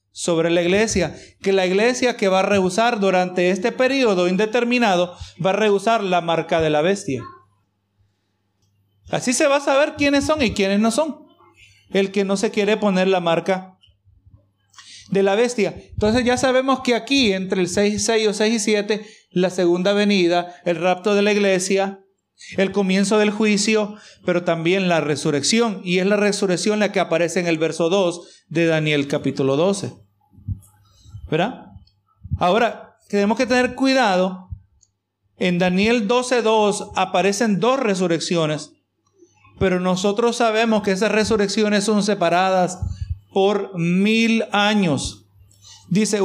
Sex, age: male, 40-59